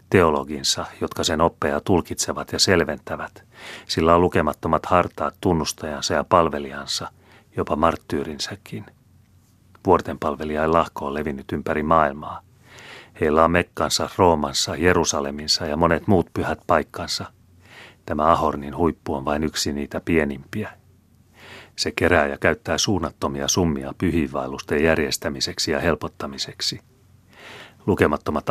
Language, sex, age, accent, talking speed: Finnish, male, 40-59, native, 110 wpm